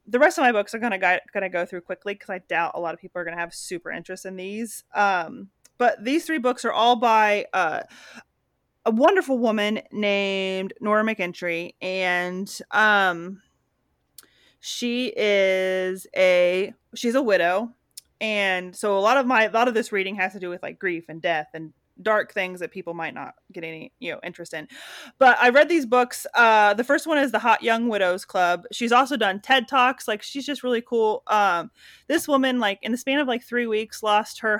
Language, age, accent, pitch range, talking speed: English, 30-49, American, 190-240 Hz, 210 wpm